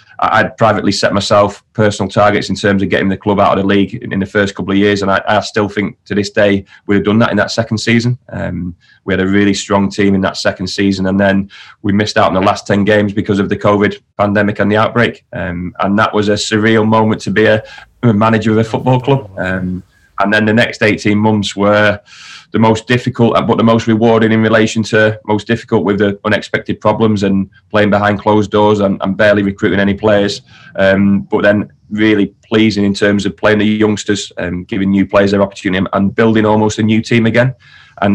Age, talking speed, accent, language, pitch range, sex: 30-49, 225 wpm, British, English, 100-110 Hz, male